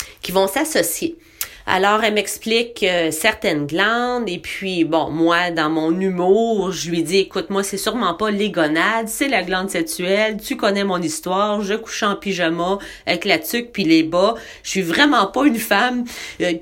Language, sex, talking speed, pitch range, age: French, female, 185 wpm, 165-225 Hz, 30-49